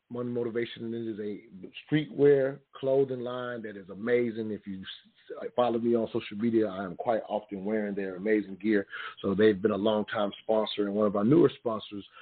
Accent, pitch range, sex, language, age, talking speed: American, 100-115 Hz, male, English, 40-59, 175 wpm